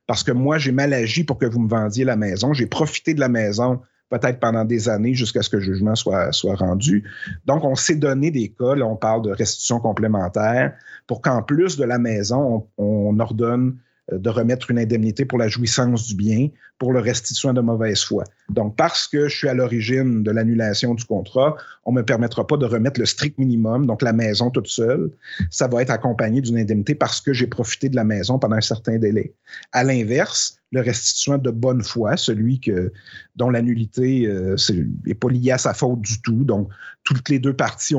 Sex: male